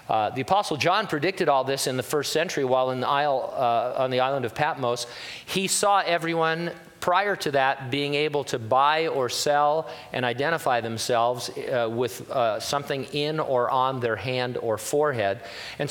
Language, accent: English, American